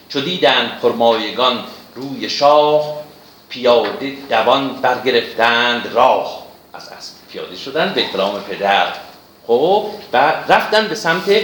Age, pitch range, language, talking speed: 50-69, 115-175 Hz, Persian, 110 wpm